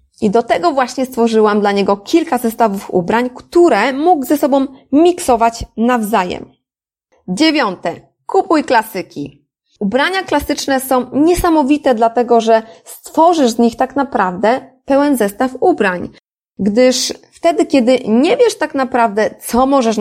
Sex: female